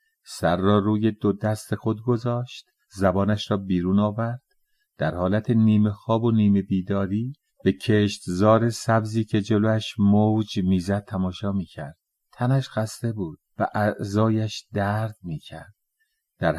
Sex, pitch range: male, 105-120 Hz